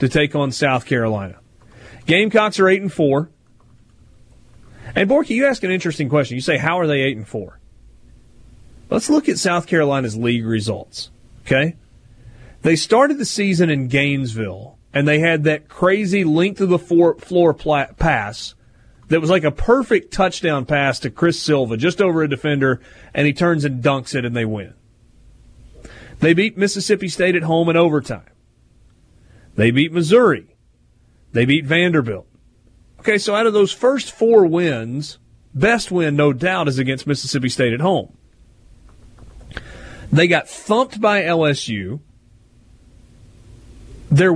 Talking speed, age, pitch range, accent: 145 wpm, 30-49, 115-175 Hz, American